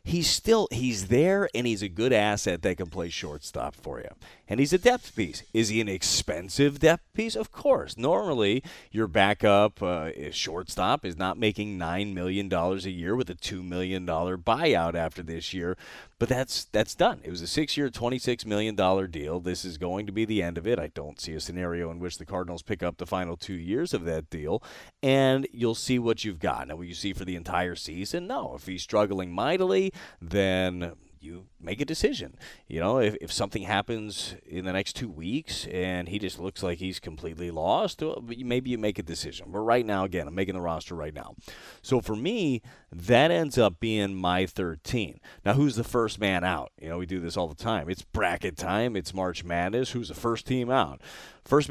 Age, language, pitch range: 30-49, English, 90-115 Hz